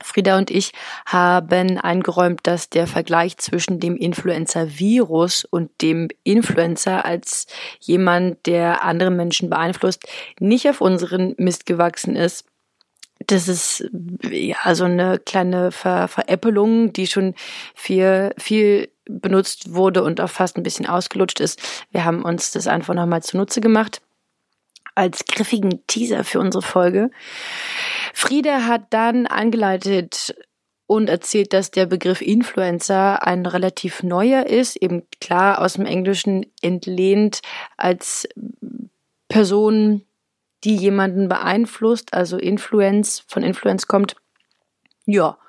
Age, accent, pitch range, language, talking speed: 30-49, German, 180-220 Hz, German, 120 wpm